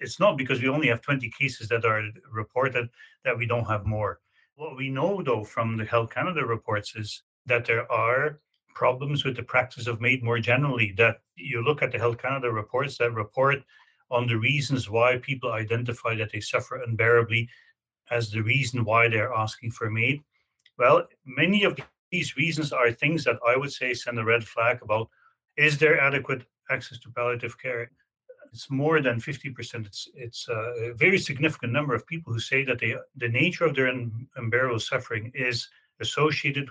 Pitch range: 115-140 Hz